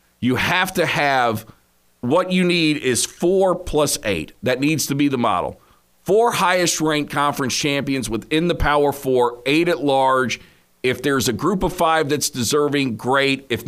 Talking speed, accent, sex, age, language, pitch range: 170 wpm, American, male, 50-69, English, 115-160 Hz